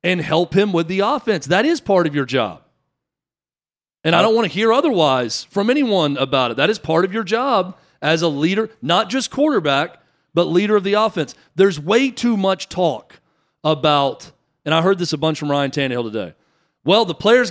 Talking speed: 200 wpm